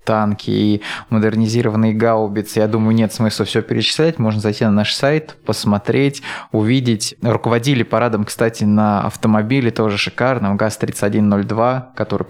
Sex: male